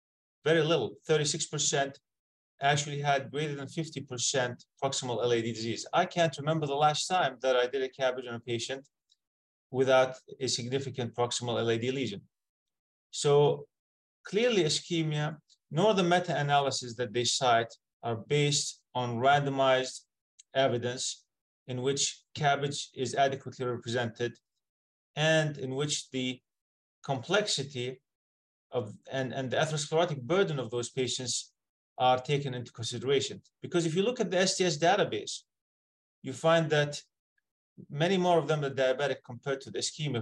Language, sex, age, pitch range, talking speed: English, male, 30-49, 125-150 Hz, 135 wpm